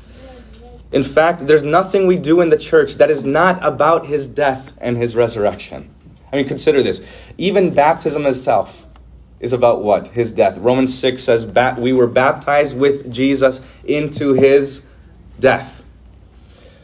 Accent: American